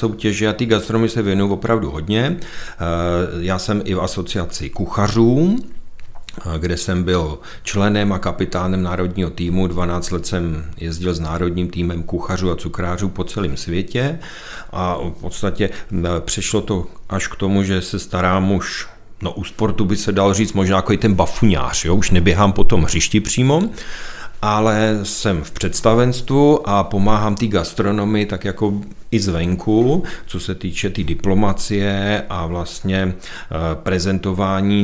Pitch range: 90-100 Hz